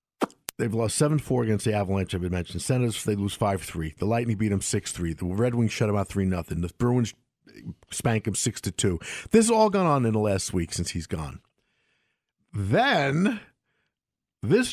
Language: English